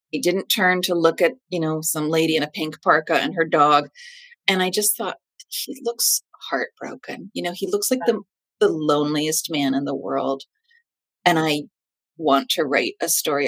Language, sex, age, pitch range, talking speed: English, female, 30-49, 160-225 Hz, 190 wpm